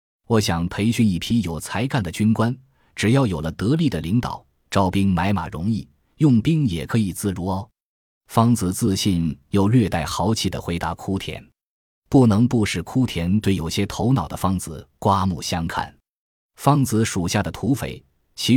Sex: male